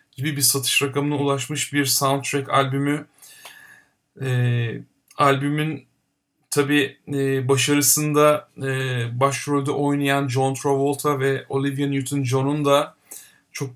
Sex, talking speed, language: male, 100 wpm, Turkish